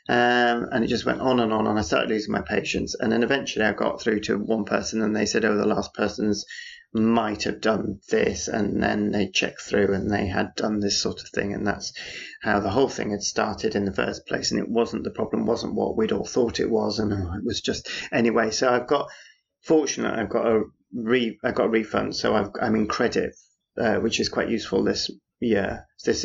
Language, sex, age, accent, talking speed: English, male, 30-49, British, 225 wpm